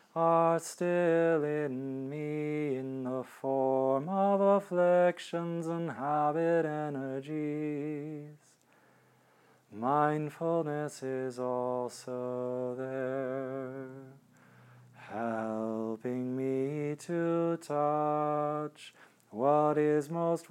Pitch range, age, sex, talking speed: 150-175 Hz, 30-49, male, 65 wpm